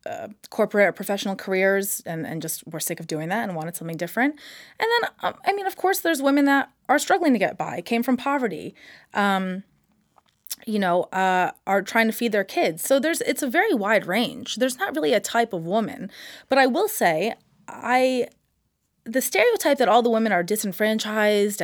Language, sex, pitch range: English, female, 190-260 Hz